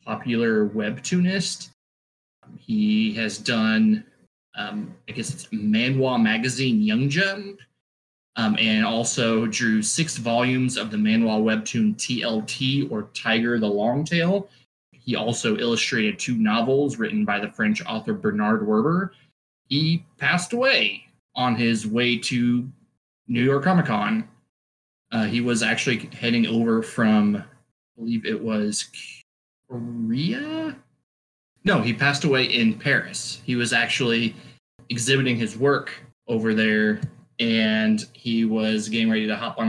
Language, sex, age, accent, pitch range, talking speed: English, male, 20-39, American, 110-160 Hz, 130 wpm